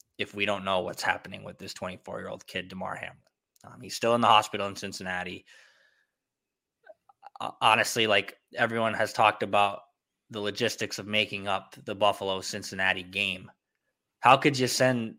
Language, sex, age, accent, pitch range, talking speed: English, male, 20-39, American, 100-125 Hz, 150 wpm